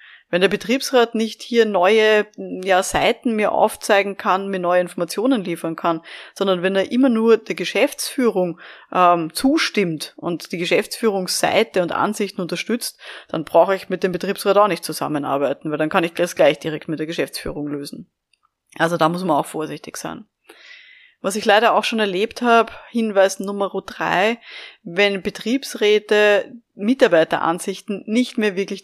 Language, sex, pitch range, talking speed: German, female, 180-235 Hz, 150 wpm